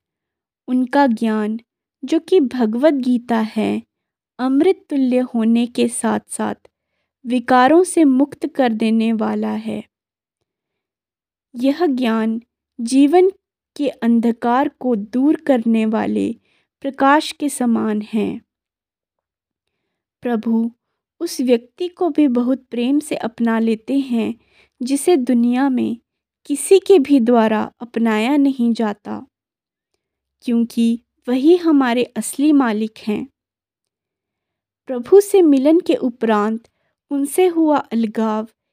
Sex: female